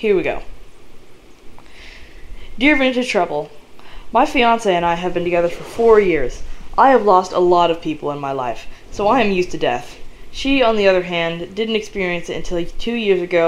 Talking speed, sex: 195 wpm, female